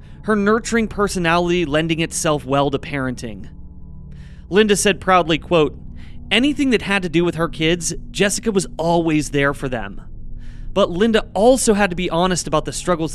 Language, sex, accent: English, male, American